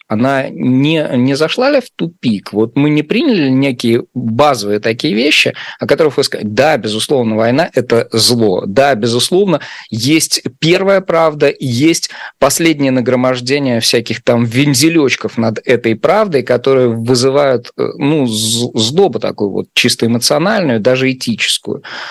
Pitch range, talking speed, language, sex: 115-140 Hz, 130 wpm, Russian, male